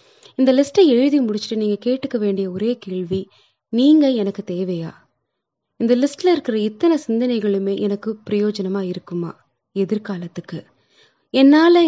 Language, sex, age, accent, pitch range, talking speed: Tamil, female, 20-39, native, 185-235 Hz, 110 wpm